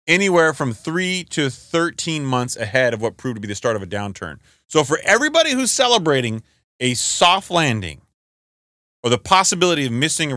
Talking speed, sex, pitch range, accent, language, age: 180 wpm, male, 120-185 Hz, American, English, 30-49